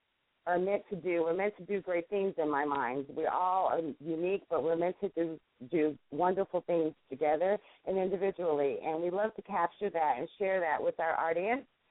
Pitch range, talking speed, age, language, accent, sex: 160-205 Hz, 200 wpm, 40-59, English, American, female